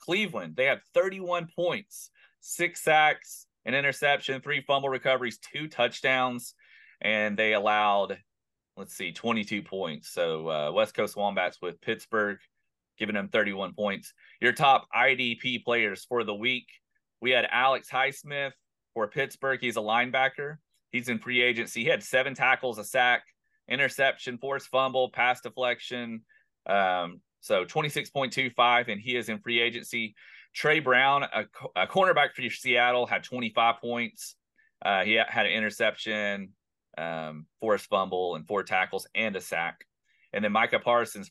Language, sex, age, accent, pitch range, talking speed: English, male, 30-49, American, 105-130 Hz, 145 wpm